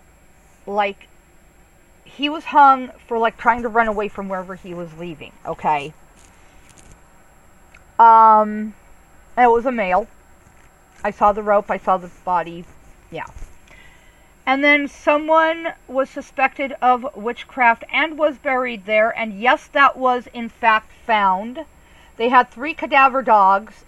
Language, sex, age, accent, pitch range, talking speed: English, female, 40-59, American, 205-260 Hz, 135 wpm